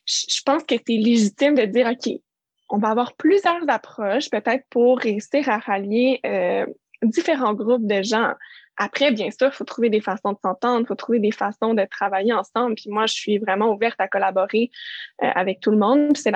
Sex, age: female, 20-39